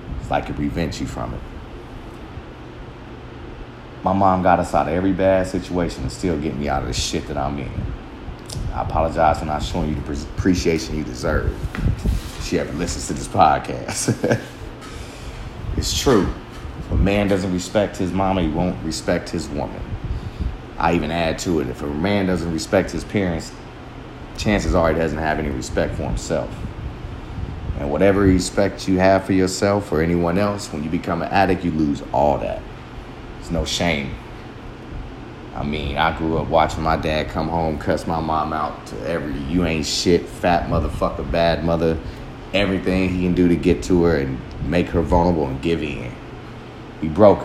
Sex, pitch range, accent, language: male, 75-95 Hz, American, English